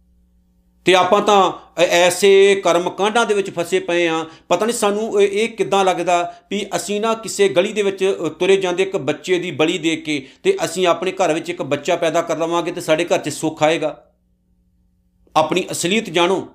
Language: Punjabi